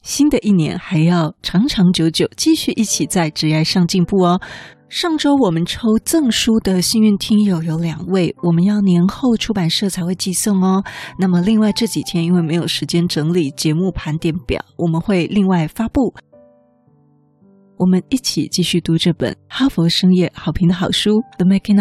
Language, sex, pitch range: Chinese, female, 165-210 Hz